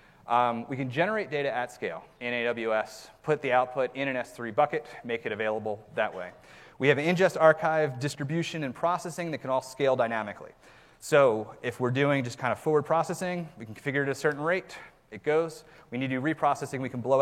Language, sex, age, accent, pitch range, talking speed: English, male, 30-49, American, 115-150 Hz, 210 wpm